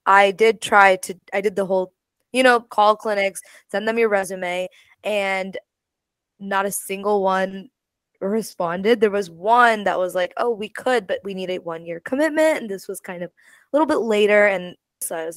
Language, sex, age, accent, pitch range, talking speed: English, female, 20-39, American, 180-225 Hz, 200 wpm